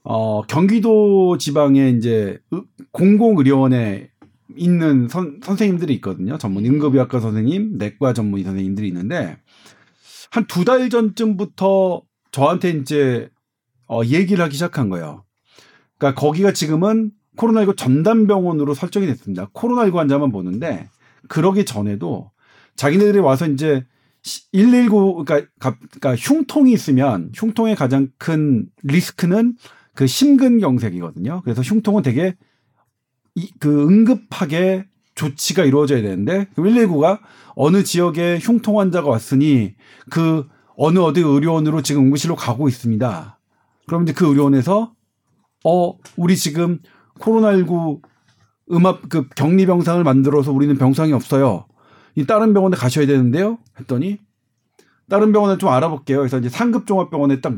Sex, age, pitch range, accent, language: male, 40-59, 135-195 Hz, native, Korean